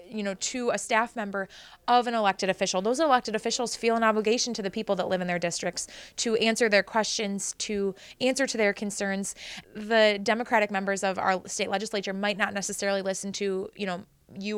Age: 20-39